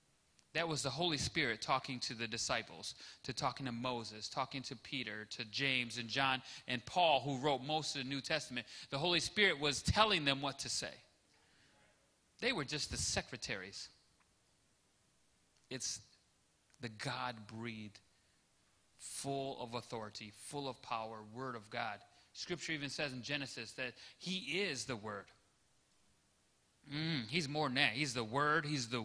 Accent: American